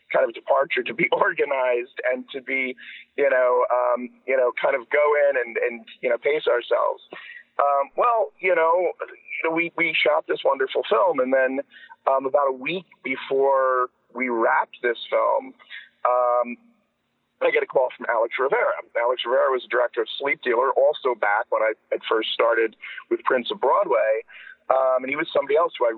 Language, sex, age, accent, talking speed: English, male, 40-59, American, 180 wpm